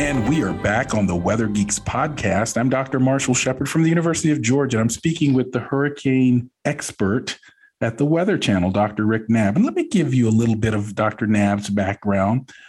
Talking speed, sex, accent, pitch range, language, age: 205 wpm, male, American, 105-130 Hz, English, 40-59